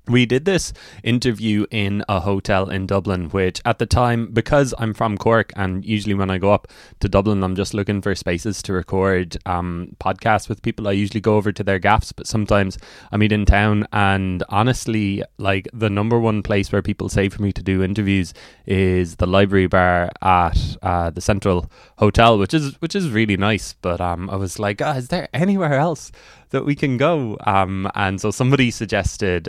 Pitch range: 95-115 Hz